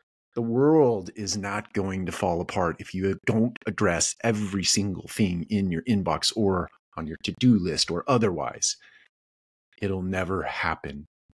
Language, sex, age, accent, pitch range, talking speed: English, male, 30-49, American, 80-100 Hz, 150 wpm